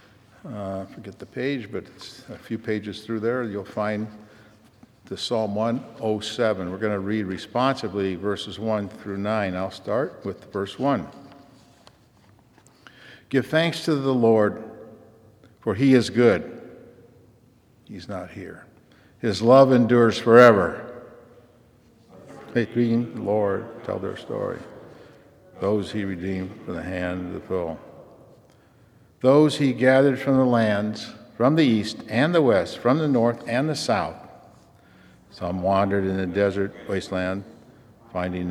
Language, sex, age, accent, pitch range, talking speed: English, male, 60-79, American, 95-120 Hz, 135 wpm